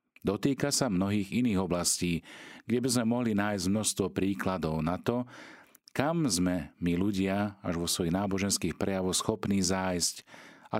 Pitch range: 85-105 Hz